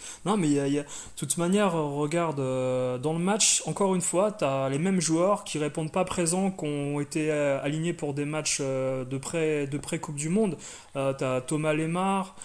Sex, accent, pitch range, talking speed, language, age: male, French, 165-225 Hz, 195 wpm, French, 30-49